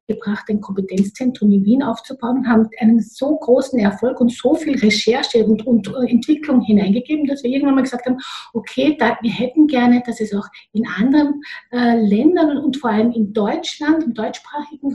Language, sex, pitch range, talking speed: German, female, 215-260 Hz, 175 wpm